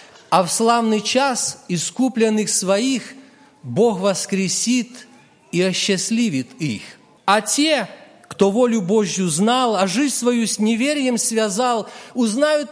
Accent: native